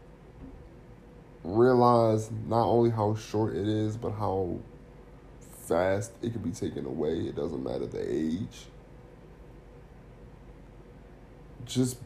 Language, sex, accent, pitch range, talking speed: English, male, American, 95-120 Hz, 105 wpm